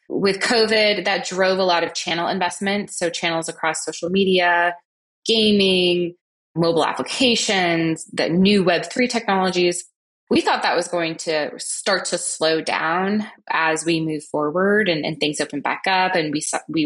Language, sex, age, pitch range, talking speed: English, female, 20-39, 160-195 Hz, 155 wpm